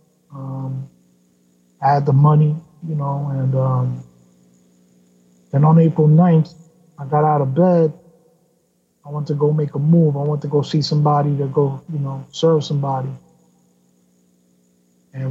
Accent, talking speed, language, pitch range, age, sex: American, 150 wpm, English, 135-150 Hz, 30-49, male